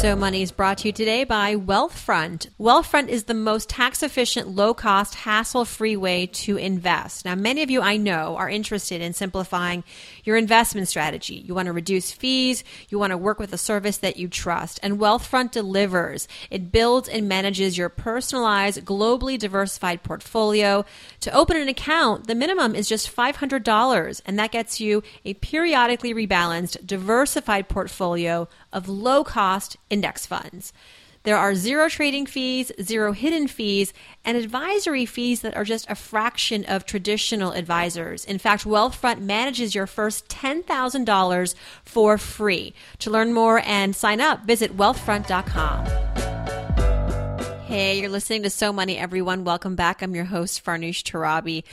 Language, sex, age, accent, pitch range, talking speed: English, female, 30-49, American, 185-230 Hz, 150 wpm